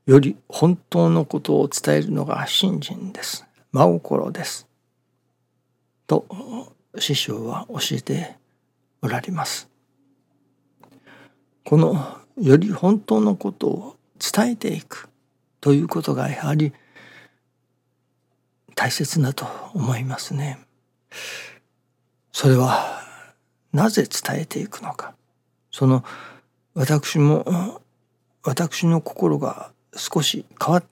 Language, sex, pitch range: Japanese, male, 125-170 Hz